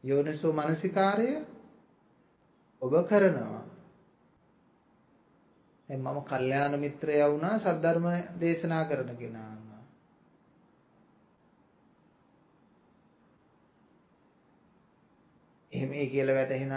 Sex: male